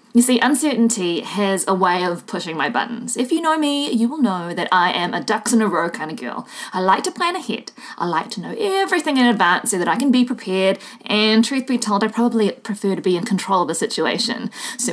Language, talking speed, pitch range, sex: English, 245 wpm, 190-260 Hz, female